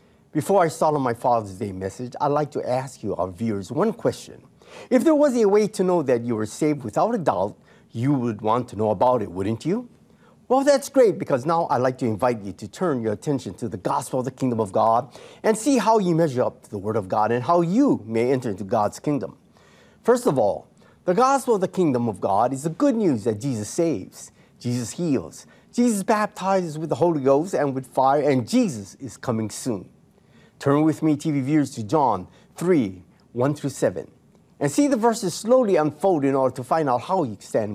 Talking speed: 220 wpm